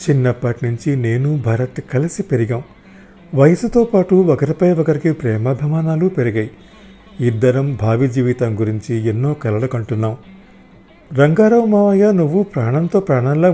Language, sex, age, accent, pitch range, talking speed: Telugu, male, 40-59, native, 130-175 Hz, 105 wpm